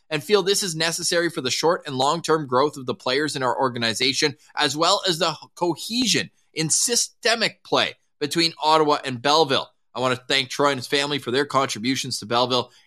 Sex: male